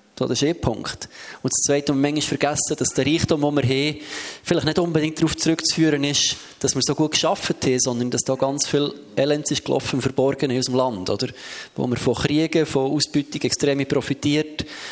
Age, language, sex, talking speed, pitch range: 20-39, German, male, 190 wpm, 130-155 Hz